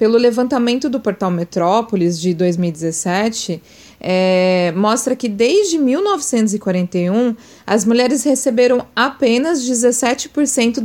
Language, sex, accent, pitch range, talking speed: Portuguese, female, Brazilian, 180-245 Hz, 90 wpm